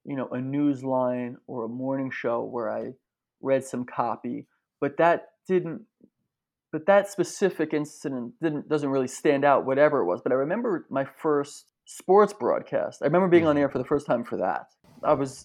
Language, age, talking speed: English, 20-39, 190 wpm